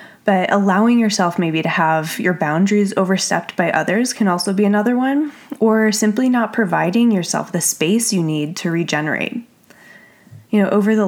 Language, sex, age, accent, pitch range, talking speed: English, female, 20-39, American, 175-225 Hz, 170 wpm